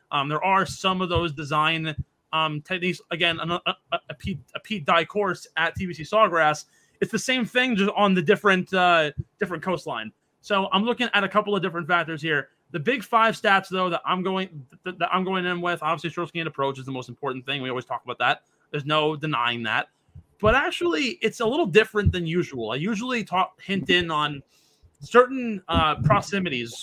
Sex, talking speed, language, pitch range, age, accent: male, 205 wpm, English, 155-195 Hz, 20-39, American